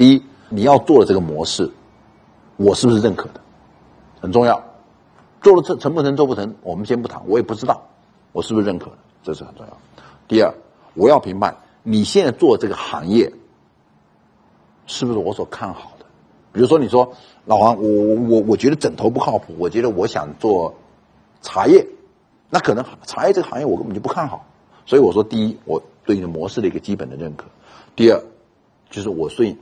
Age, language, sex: 50-69, Chinese, male